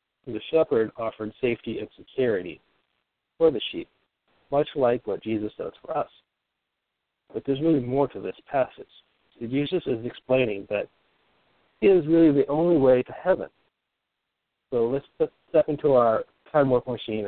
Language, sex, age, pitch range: English, male, 40-59, 110-150 Hz